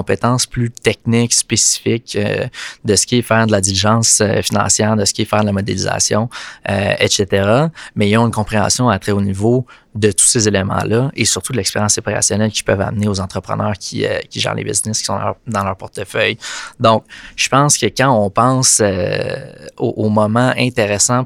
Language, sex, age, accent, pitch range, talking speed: French, male, 20-39, Canadian, 105-120 Hz, 205 wpm